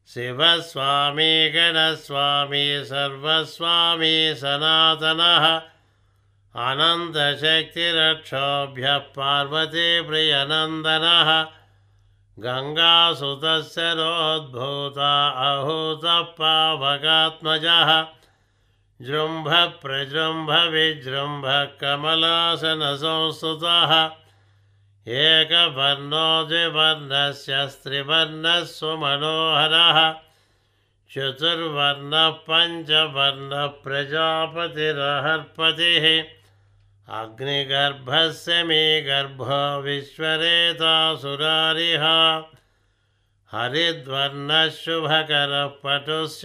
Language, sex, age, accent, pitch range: Telugu, male, 60-79, native, 140-160 Hz